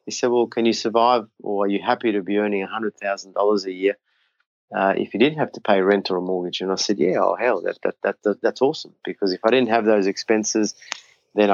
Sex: male